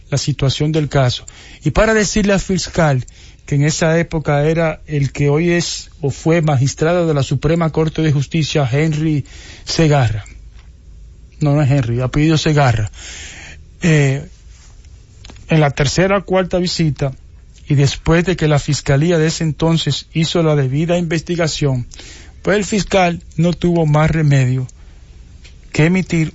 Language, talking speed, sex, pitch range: English, 150 wpm, male, 130-165 Hz